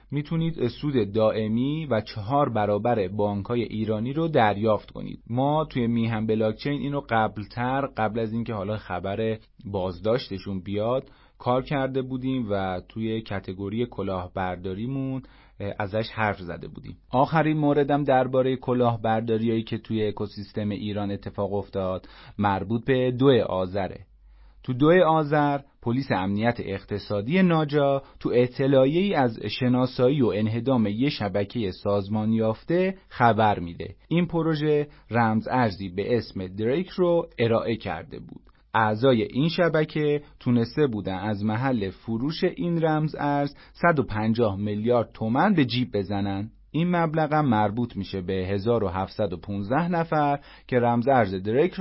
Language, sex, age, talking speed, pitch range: Persian, male, 30-49, 125 wpm, 100-135 Hz